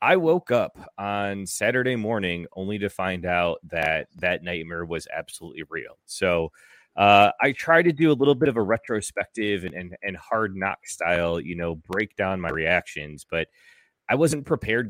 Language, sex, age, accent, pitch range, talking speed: English, male, 30-49, American, 90-120 Hz, 175 wpm